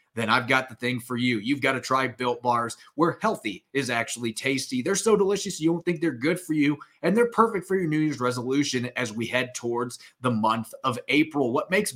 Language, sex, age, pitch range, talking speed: English, male, 30-49, 125-165 Hz, 230 wpm